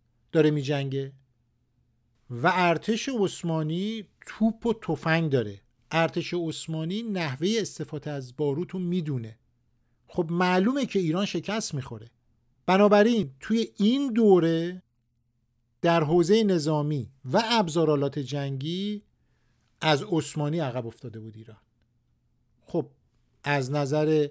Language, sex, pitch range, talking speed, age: Persian, male, 135-190 Hz, 105 wpm, 50-69